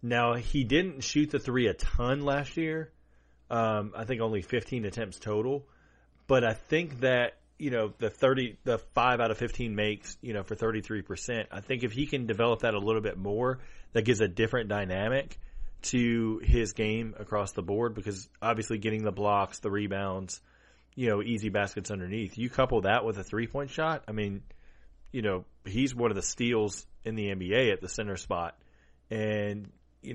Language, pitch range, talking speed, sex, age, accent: English, 100-115 Hz, 195 wpm, male, 30-49, American